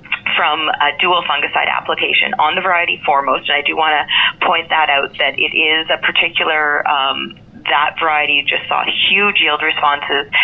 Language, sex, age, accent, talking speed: English, female, 30-49, American, 175 wpm